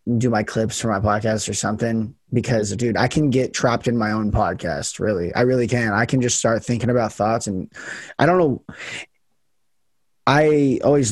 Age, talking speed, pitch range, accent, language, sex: 20-39, 190 wpm, 110-125 Hz, American, English, male